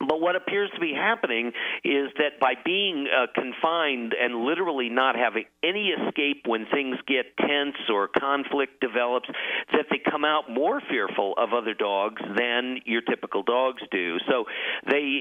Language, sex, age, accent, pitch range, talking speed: English, male, 50-69, American, 115-145 Hz, 160 wpm